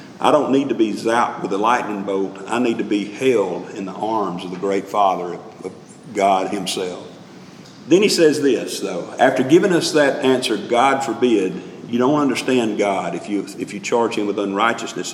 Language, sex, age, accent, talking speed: English, male, 50-69, American, 190 wpm